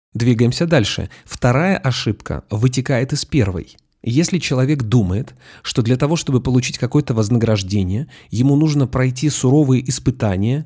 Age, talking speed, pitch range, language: 30-49, 125 wpm, 115-150 Hz, Russian